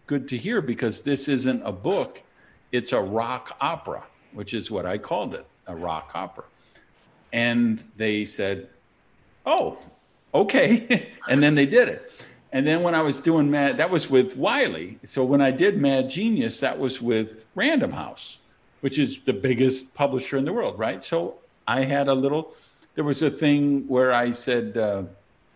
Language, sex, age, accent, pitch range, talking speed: English, male, 50-69, American, 115-150 Hz, 175 wpm